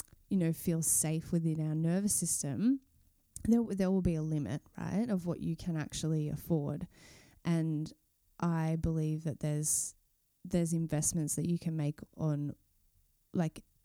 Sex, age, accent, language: female, 20-39, Australian, English